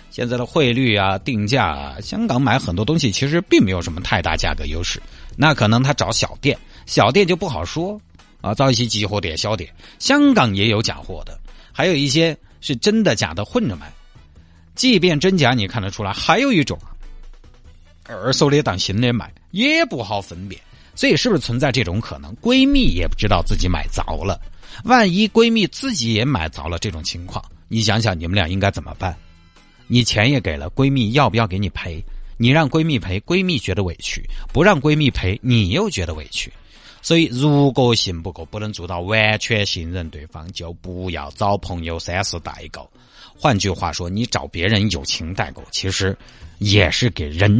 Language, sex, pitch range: Chinese, male, 90-130 Hz